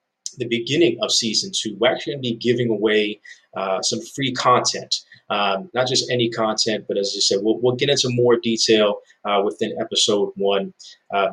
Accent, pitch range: American, 100-120 Hz